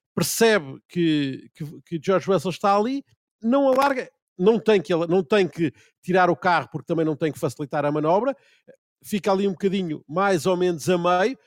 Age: 50-69